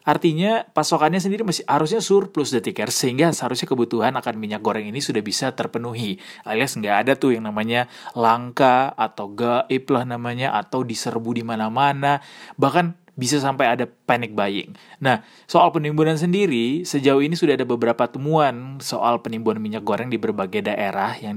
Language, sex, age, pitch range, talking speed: Indonesian, male, 30-49, 115-155 Hz, 155 wpm